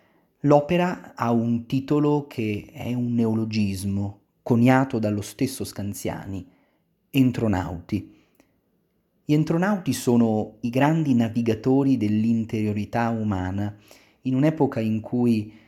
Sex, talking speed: male, 95 wpm